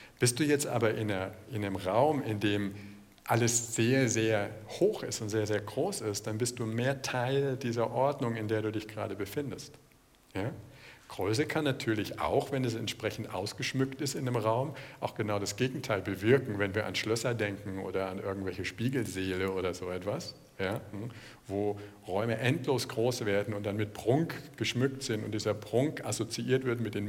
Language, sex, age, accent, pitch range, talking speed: German, male, 50-69, German, 105-135 Hz, 175 wpm